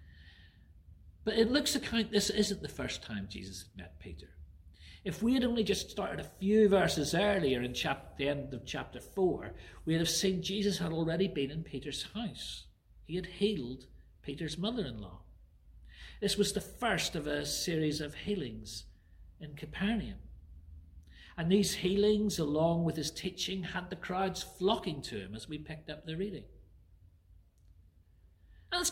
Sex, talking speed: male, 160 wpm